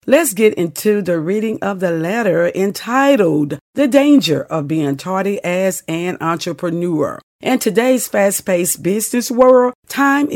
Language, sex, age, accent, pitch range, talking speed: English, female, 50-69, American, 165-220 Hz, 135 wpm